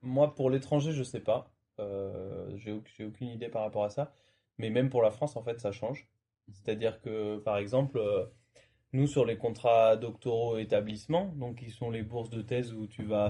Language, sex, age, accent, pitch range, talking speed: French, male, 20-39, French, 105-125 Hz, 205 wpm